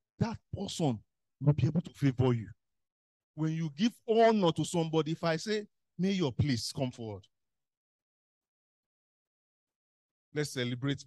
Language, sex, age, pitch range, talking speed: English, male, 50-69, 125-180 Hz, 125 wpm